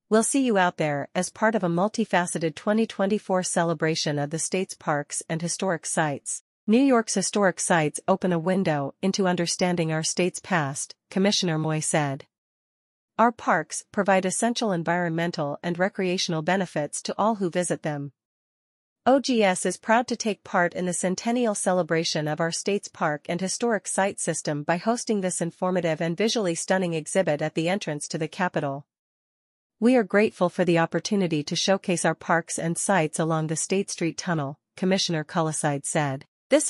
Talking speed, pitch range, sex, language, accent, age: 165 wpm, 160-200 Hz, female, English, American, 40-59